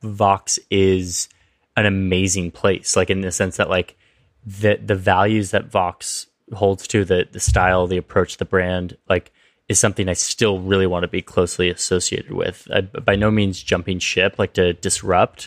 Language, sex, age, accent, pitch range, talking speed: English, male, 20-39, American, 95-110 Hz, 175 wpm